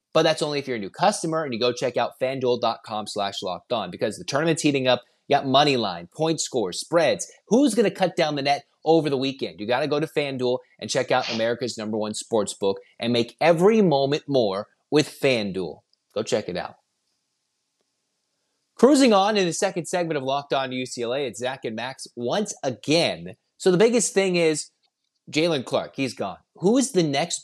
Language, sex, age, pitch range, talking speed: English, male, 30-49, 125-175 Hz, 205 wpm